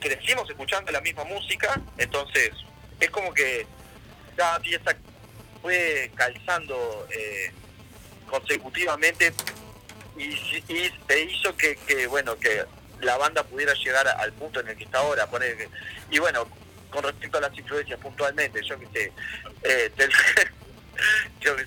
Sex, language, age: male, Spanish, 40-59